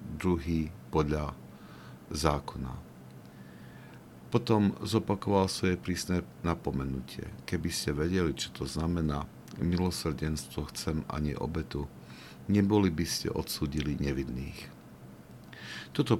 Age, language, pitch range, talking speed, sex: 50-69, Slovak, 70-90 Hz, 90 wpm, male